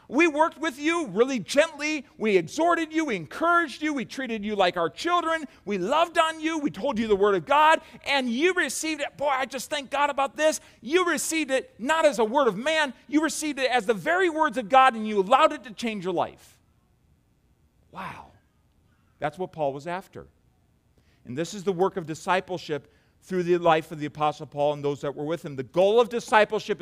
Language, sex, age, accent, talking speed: English, male, 40-59, American, 215 wpm